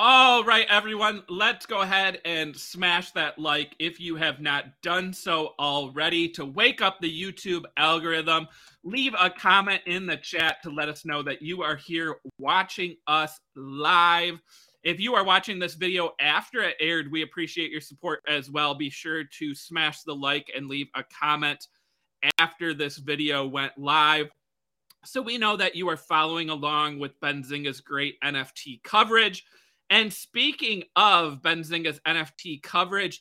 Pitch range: 150-185 Hz